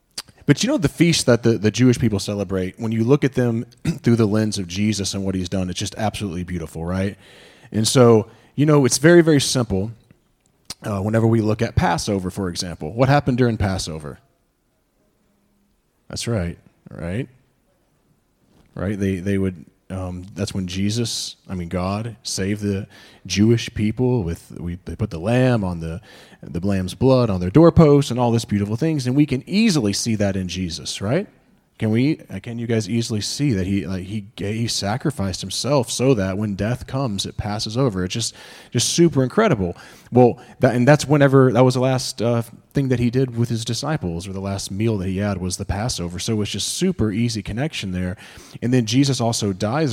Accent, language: American, English